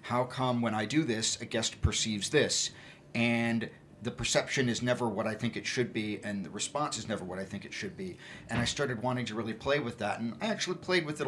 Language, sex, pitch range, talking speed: English, male, 110-130 Hz, 250 wpm